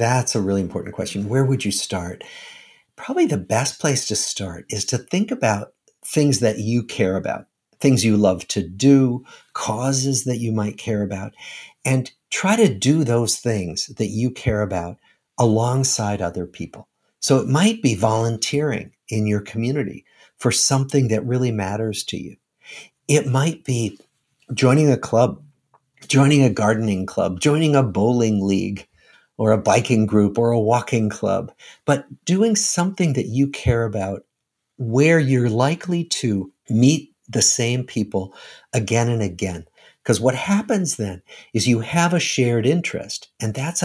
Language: English